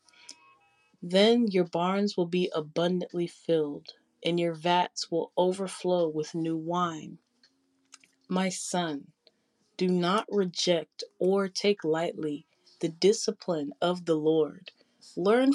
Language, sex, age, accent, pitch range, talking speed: English, female, 30-49, American, 160-195 Hz, 110 wpm